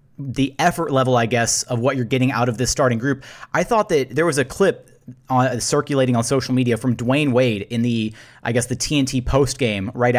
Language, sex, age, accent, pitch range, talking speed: English, male, 30-49, American, 125-145 Hz, 210 wpm